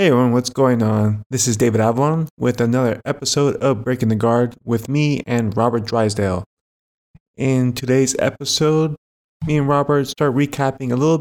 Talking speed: 165 wpm